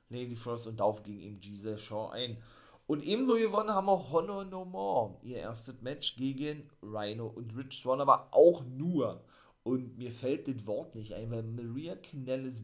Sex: male